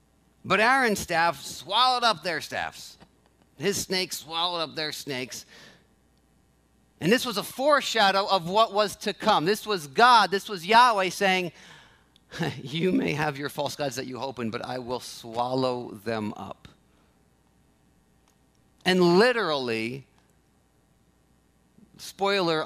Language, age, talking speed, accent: English, 40-59, 130 wpm, American